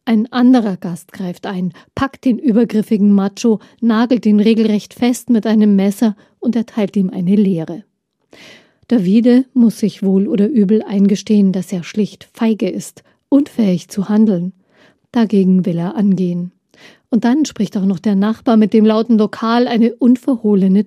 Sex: female